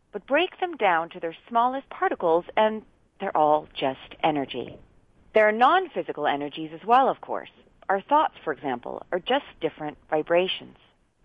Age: 40-59